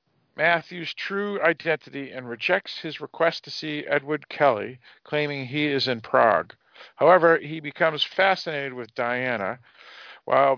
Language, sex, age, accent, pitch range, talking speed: English, male, 50-69, American, 130-160 Hz, 130 wpm